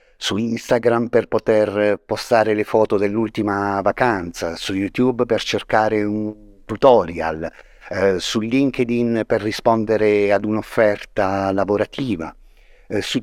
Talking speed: 110 wpm